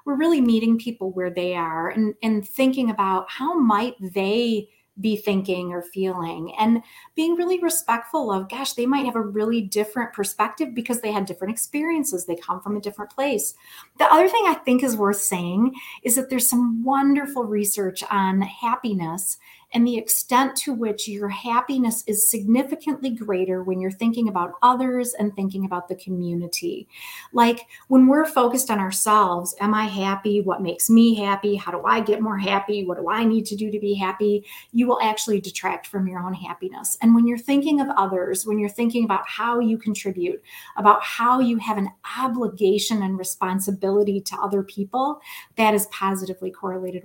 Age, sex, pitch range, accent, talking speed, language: 30-49, female, 195-245 Hz, American, 180 wpm, English